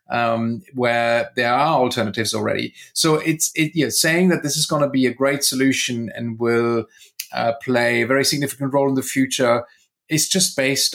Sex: male